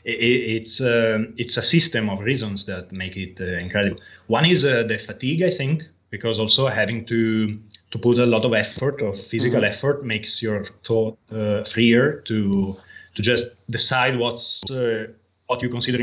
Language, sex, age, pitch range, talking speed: English, male, 20-39, 100-120 Hz, 170 wpm